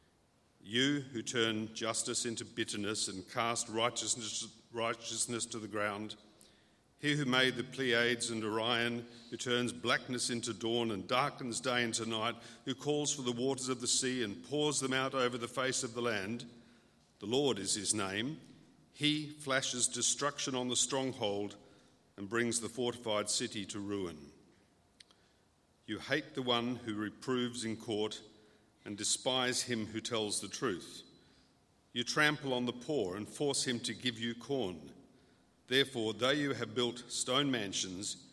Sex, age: male, 50-69